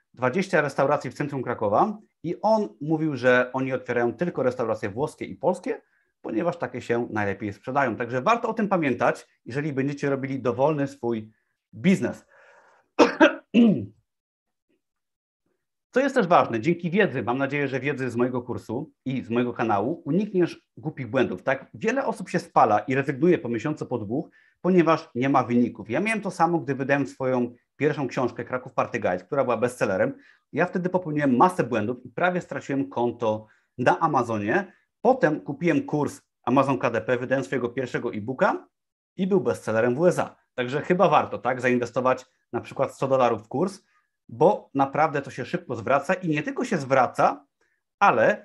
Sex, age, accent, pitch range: male, 30-49, native, 125-175 Hz